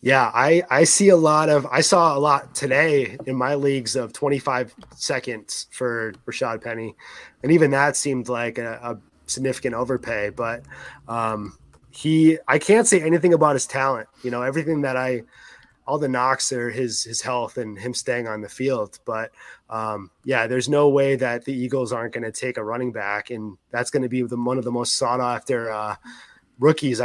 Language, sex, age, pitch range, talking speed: English, male, 20-39, 115-135 Hz, 190 wpm